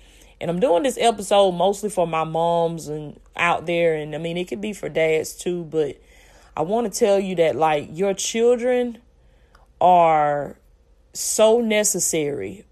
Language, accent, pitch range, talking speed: English, American, 160-200 Hz, 160 wpm